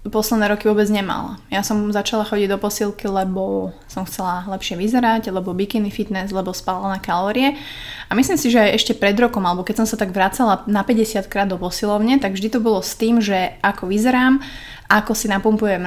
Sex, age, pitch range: female, 20-39, 185-220 Hz